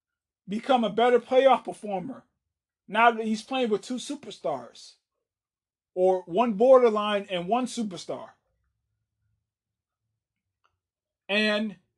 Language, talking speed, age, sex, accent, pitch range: English, 95 wpm, 30-49, male, American, 185-235 Hz